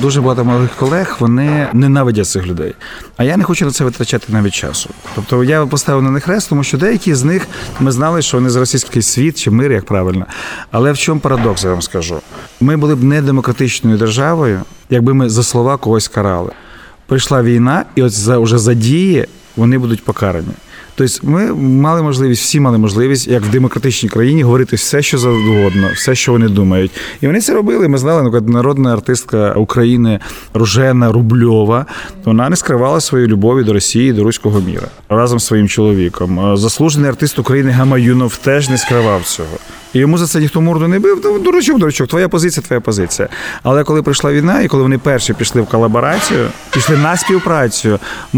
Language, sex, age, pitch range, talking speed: Ukrainian, male, 30-49, 115-145 Hz, 185 wpm